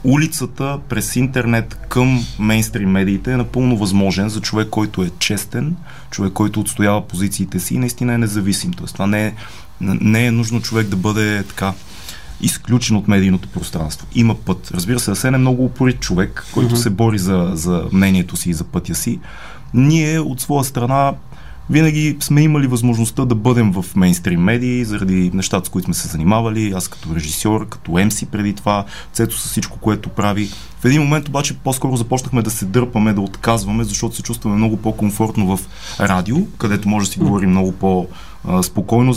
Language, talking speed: Bulgarian, 175 wpm